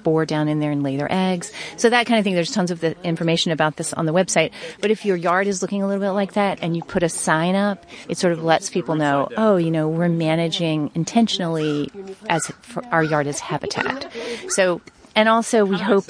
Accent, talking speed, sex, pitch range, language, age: American, 225 wpm, female, 160-195 Hz, English, 30-49